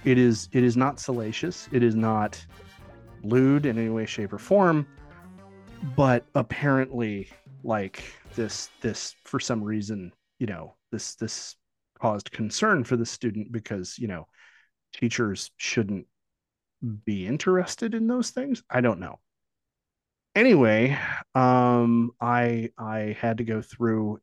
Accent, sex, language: American, male, English